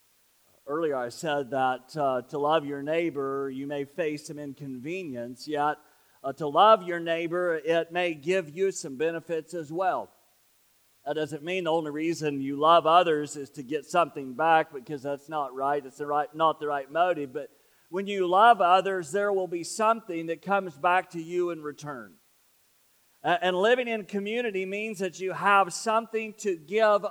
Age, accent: 40-59, American